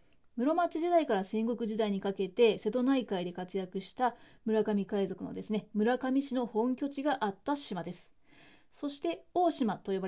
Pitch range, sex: 200-245 Hz, female